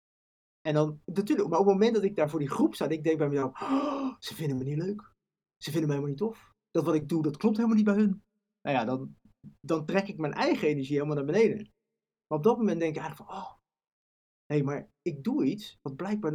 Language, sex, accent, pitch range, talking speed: Dutch, male, Dutch, 150-210 Hz, 255 wpm